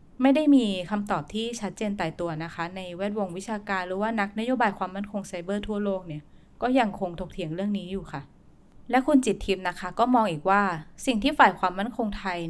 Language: Thai